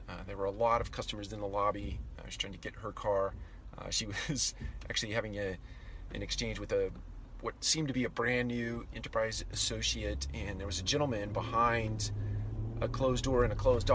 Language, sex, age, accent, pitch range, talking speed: English, male, 40-59, American, 90-115 Hz, 200 wpm